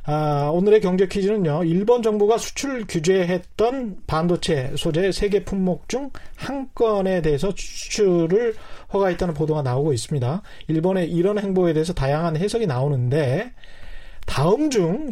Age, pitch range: 40-59, 155-215 Hz